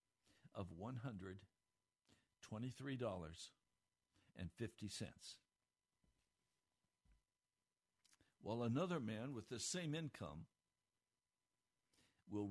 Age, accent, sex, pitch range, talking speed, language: 60-79, American, male, 100-160 Hz, 50 wpm, English